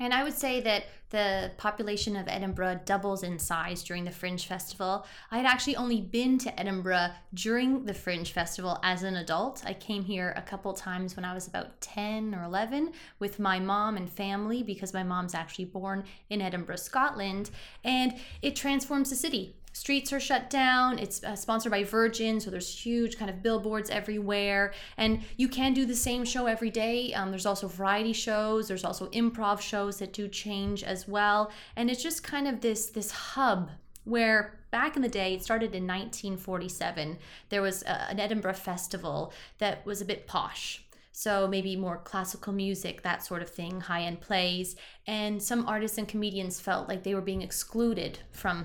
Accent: American